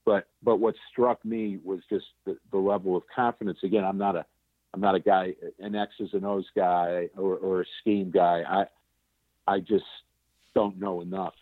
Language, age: English, 50-69